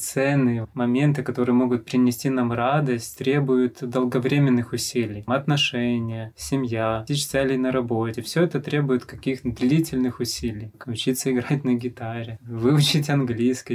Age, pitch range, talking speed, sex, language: 20-39, 120-145 Hz, 125 wpm, male, Russian